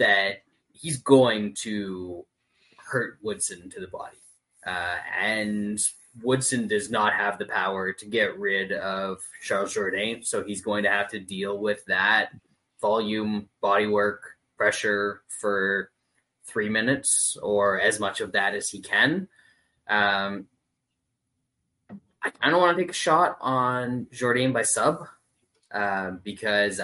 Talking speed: 135 wpm